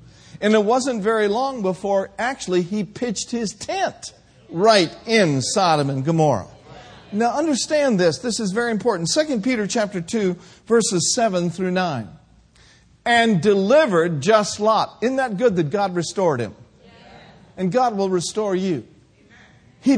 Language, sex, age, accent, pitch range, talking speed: English, male, 50-69, American, 175-245 Hz, 145 wpm